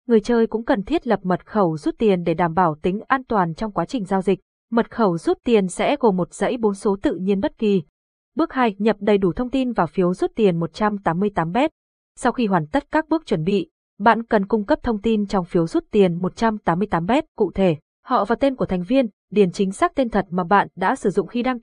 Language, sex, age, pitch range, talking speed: Vietnamese, female, 20-39, 185-235 Hz, 240 wpm